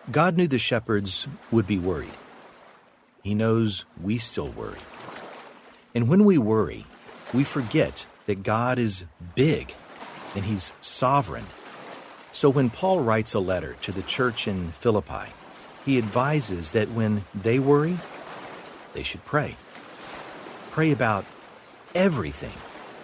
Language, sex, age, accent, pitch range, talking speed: English, male, 50-69, American, 105-140 Hz, 125 wpm